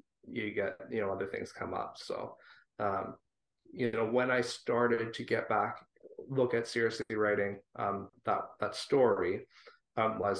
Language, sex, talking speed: English, male, 160 wpm